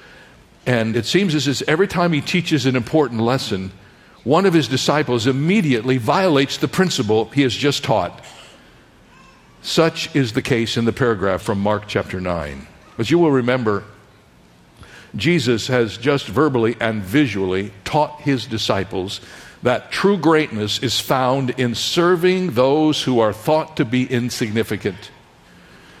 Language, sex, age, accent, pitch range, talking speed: English, male, 60-79, American, 110-150 Hz, 145 wpm